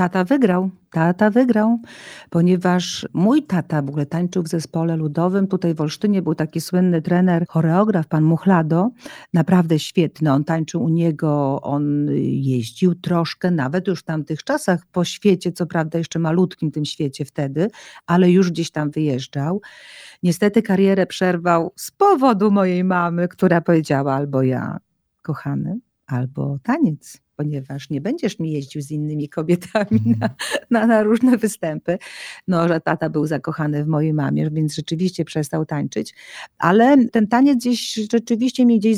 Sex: female